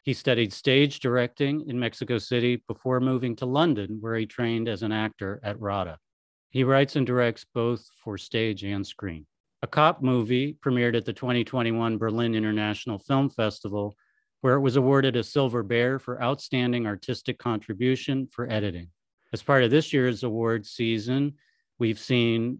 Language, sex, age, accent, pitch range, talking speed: English, male, 40-59, American, 110-135 Hz, 160 wpm